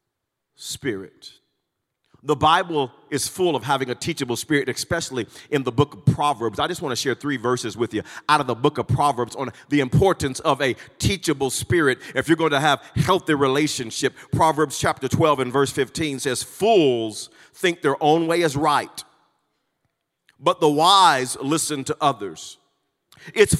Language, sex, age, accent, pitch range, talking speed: English, male, 40-59, American, 135-175 Hz, 170 wpm